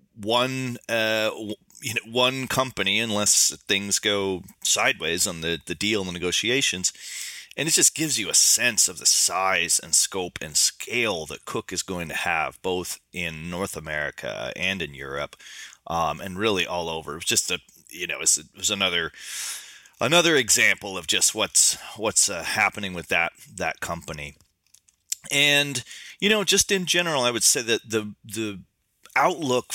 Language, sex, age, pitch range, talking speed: English, male, 30-49, 90-125 Hz, 175 wpm